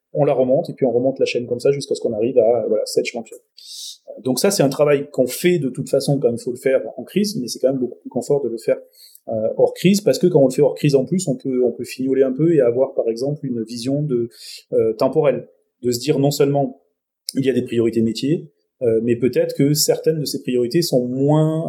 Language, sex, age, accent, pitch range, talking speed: French, male, 30-49, French, 120-175 Hz, 265 wpm